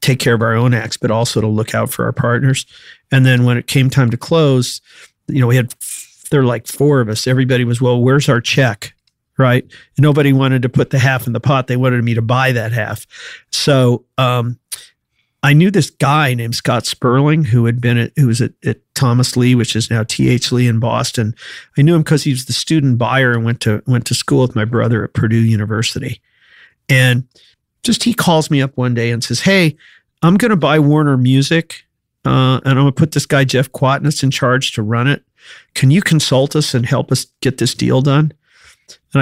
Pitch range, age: 120-145 Hz, 50-69